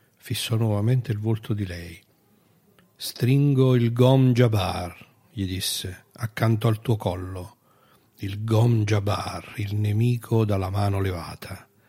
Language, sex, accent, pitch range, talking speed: Italian, male, native, 100-125 Hz, 120 wpm